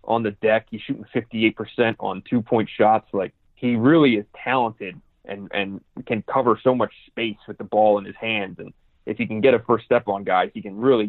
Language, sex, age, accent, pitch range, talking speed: English, male, 30-49, American, 100-125 Hz, 220 wpm